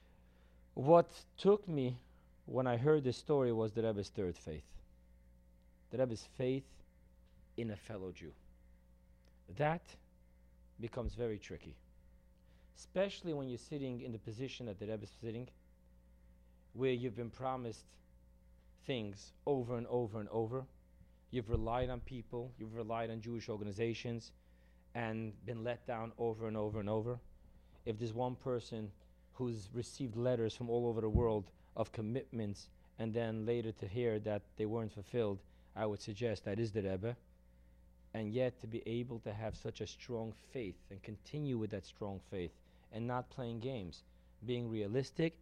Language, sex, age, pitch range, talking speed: English, male, 40-59, 80-120 Hz, 155 wpm